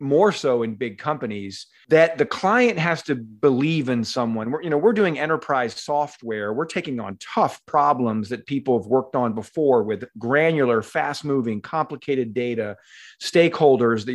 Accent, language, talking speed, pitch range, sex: American, English, 155 wpm, 130-170 Hz, male